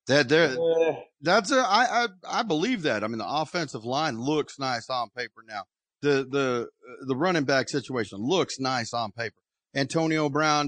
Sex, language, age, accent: male, English, 40-59, American